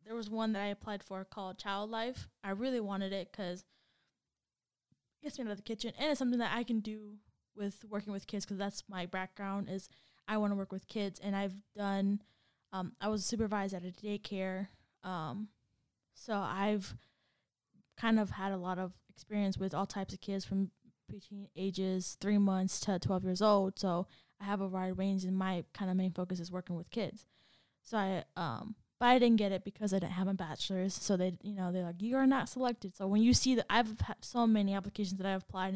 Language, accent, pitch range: English, American, 190-210 Hz